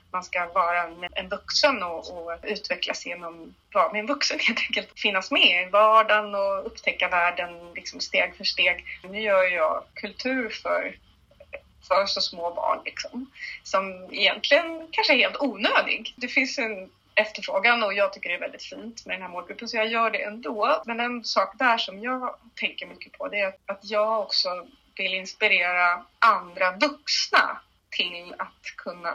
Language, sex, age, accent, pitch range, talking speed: Swedish, female, 30-49, native, 190-270 Hz, 175 wpm